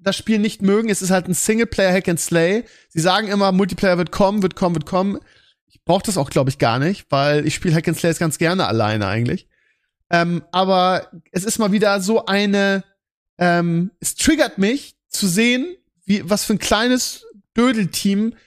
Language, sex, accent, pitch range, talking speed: German, male, German, 175-215 Hz, 180 wpm